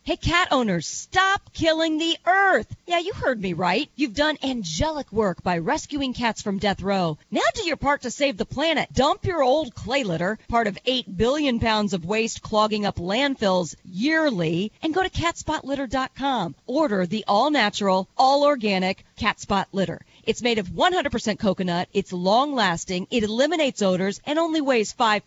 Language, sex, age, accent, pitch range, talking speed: English, female, 40-59, American, 200-295 Hz, 165 wpm